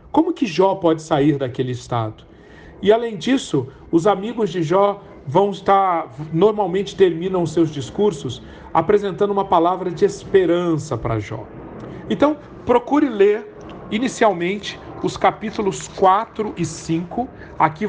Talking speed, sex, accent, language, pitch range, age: 125 wpm, male, Brazilian, Portuguese, 150-205 Hz, 40-59